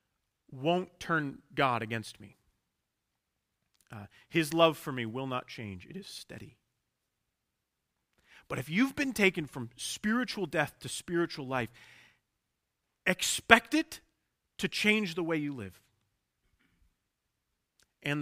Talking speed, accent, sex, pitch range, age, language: 120 wpm, American, male, 115-160 Hz, 40-59, English